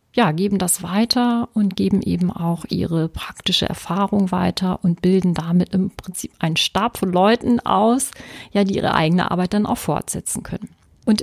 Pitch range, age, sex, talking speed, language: 180-220 Hz, 40-59, female, 170 wpm, German